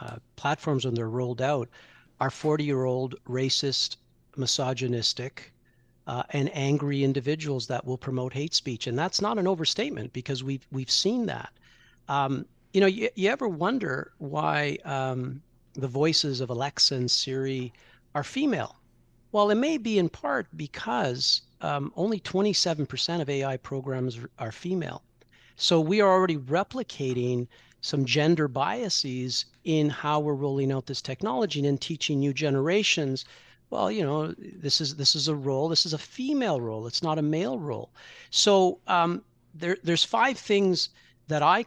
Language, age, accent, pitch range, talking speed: English, 50-69, American, 130-170 Hz, 155 wpm